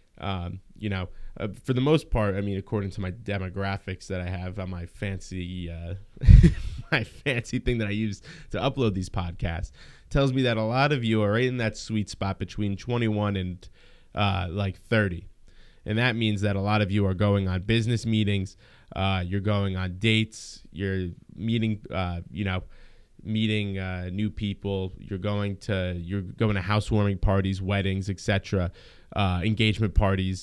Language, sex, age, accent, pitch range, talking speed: English, male, 20-39, American, 95-125 Hz, 175 wpm